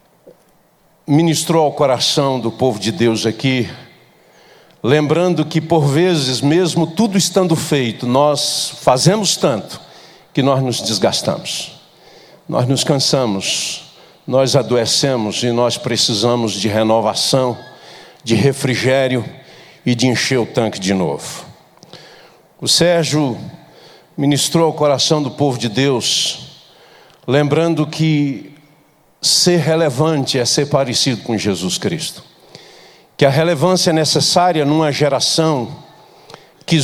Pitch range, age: 125-160 Hz, 60-79